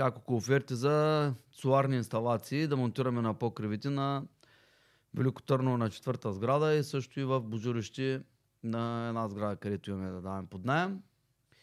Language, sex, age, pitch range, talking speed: Bulgarian, male, 30-49, 120-150 Hz, 145 wpm